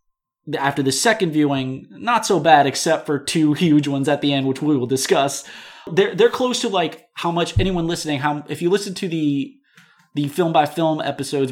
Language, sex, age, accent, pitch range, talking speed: English, male, 20-39, American, 135-170 Hz, 205 wpm